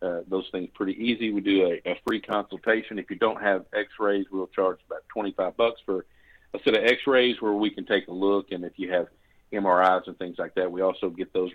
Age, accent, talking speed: 50-69, American, 235 wpm